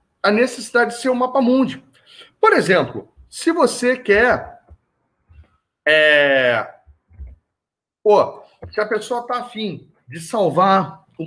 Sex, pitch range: male, 165-240 Hz